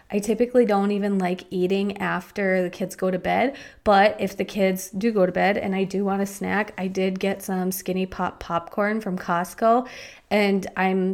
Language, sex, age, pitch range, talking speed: English, female, 20-39, 185-215 Hz, 200 wpm